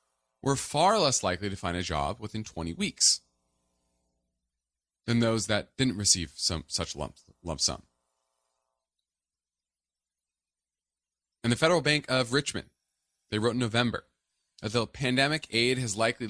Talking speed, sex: 135 wpm, male